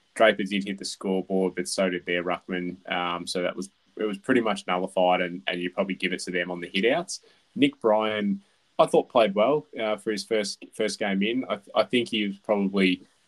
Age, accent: 20-39, Australian